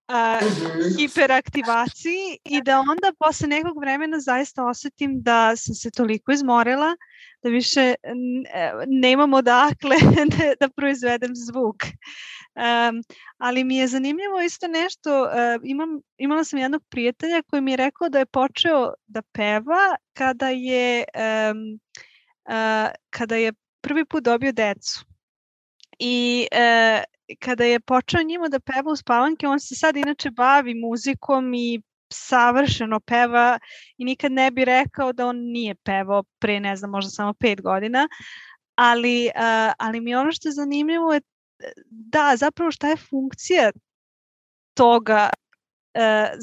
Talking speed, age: 135 wpm, 20-39